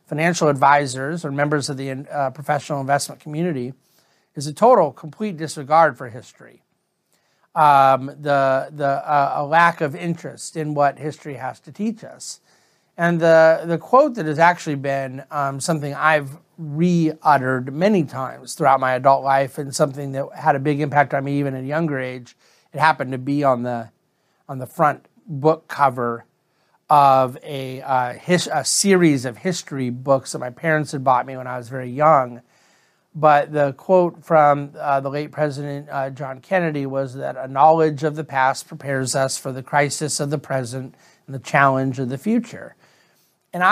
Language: English